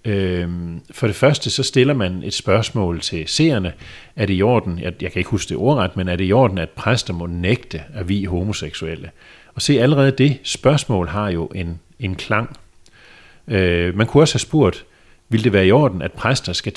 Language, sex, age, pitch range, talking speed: Danish, male, 40-59, 90-125 Hz, 195 wpm